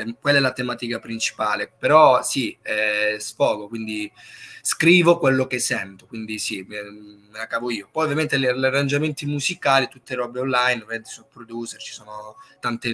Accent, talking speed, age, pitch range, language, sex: native, 170 wpm, 20-39, 115-140 Hz, Italian, male